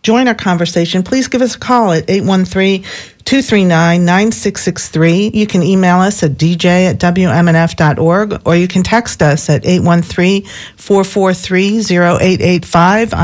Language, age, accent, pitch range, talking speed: English, 50-69, American, 170-205 Hz, 115 wpm